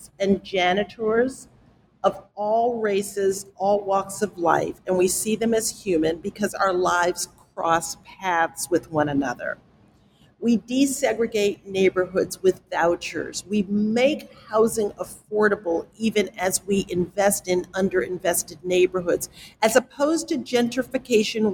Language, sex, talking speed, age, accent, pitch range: English, female, 120 wpm, 50-69, American, 185-235 Hz